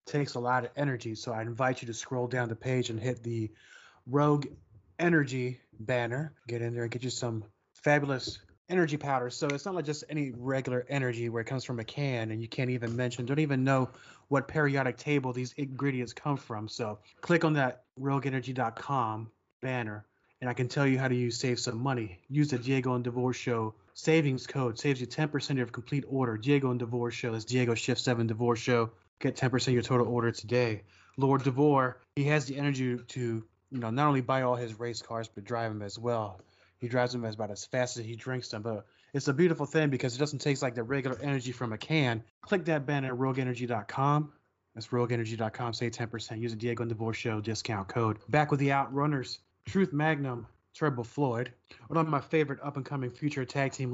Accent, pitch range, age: American, 115-140 Hz, 30-49